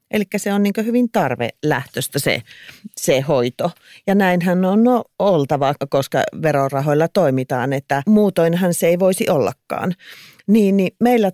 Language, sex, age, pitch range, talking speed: Finnish, female, 40-59, 140-185 Hz, 145 wpm